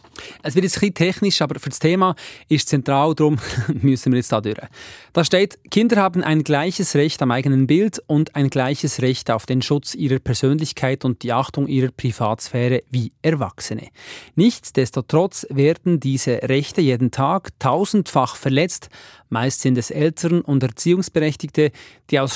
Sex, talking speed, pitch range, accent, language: male, 160 wpm, 135-175 Hz, German, German